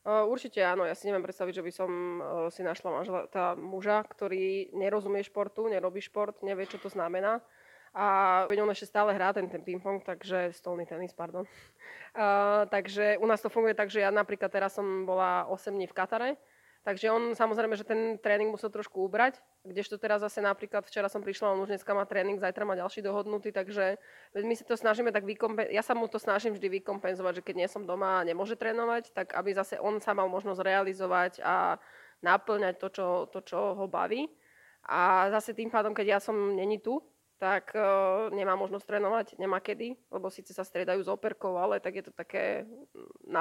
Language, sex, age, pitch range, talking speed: Slovak, female, 20-39, 190-215 Hz, 200 wpm